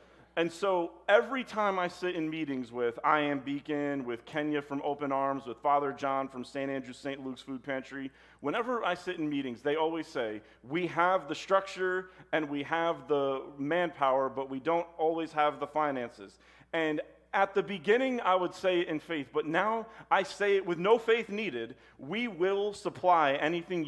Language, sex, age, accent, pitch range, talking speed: English, male, 40-59, American, 135-180 Hz, 185 wpm